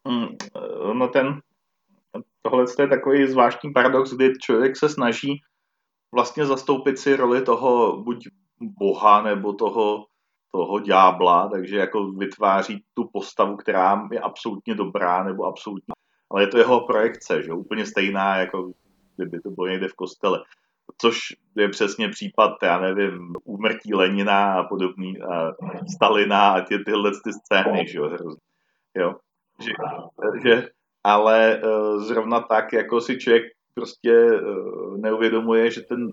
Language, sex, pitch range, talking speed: Czech, male, 100-135 Hz, 130 wpm